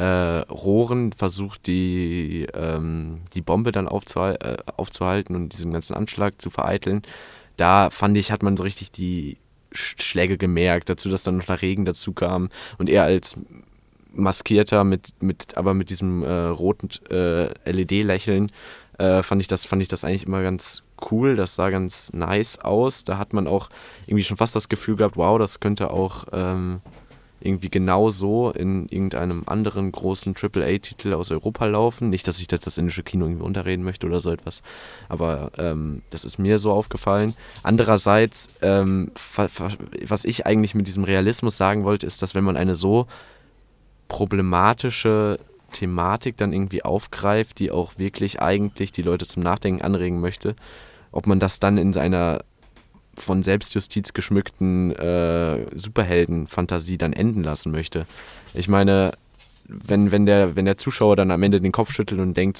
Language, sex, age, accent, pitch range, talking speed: German, male, 20-39, German, 90-100 Hz, 170 wpm